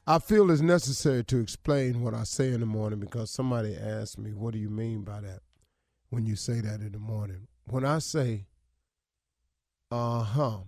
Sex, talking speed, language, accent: male, 190 wpm, English, American